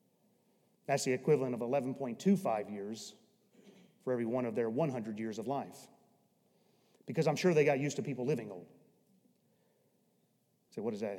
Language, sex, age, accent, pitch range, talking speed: English, male, 30-49, American, 165-235 Hz, 155 wpm